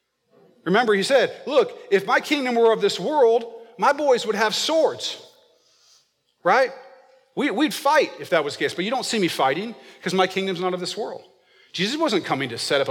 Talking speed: 200 wpm